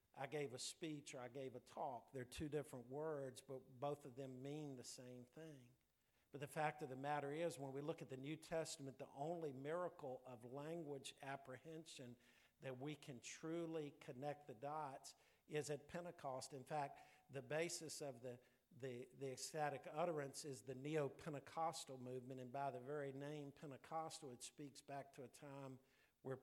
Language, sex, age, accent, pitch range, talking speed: English, male, 50-69, American, 125-145 Hz, 175 wpm